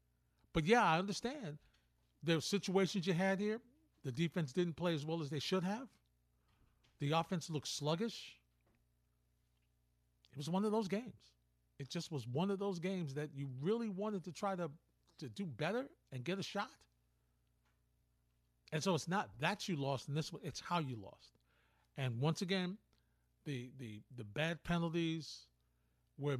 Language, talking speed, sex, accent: English, 170 wpm, male, American